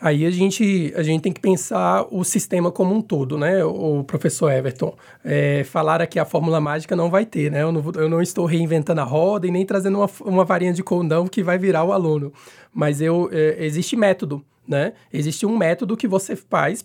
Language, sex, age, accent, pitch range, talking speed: Portuguese, male, 20-39, Brazilian, 160-200 Hz, 215 wpm